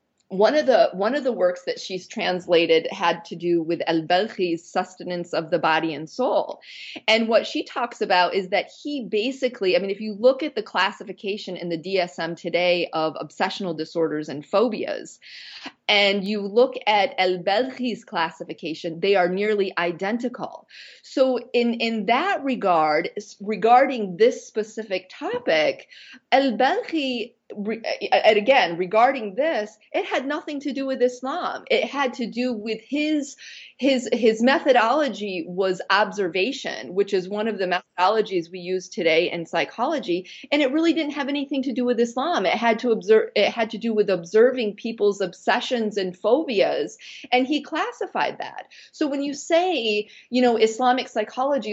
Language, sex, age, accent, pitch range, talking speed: English, female, 30-49, American, 185-265 Hz, 160 wpm